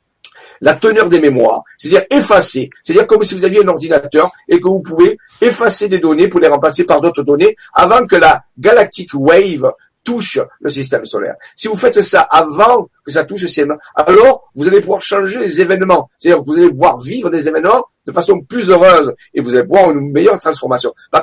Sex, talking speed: male, 205 wpm